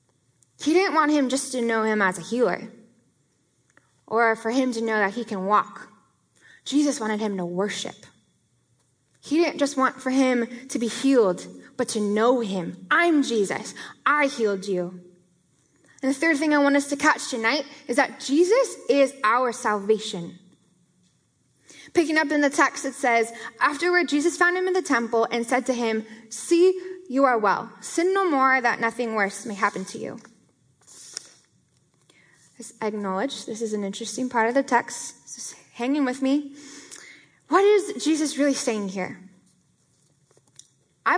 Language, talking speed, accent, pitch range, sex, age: English, 165 wpm, American, 220-295 Hz, female, 10-29